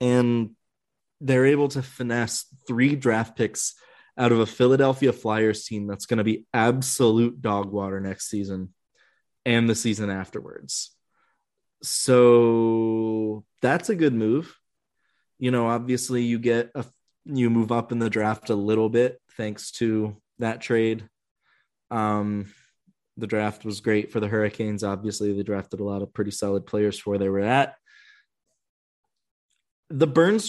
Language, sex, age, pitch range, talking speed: English, male, 20-39, 110-130 Hz, 145 wpm